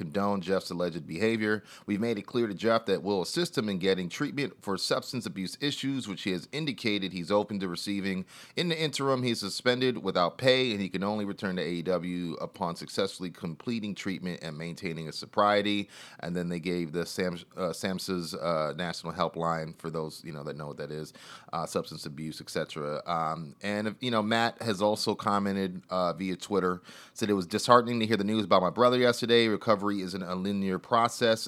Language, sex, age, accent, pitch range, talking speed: English, male, 30-49, American, 90-115 Hz, 195 wpm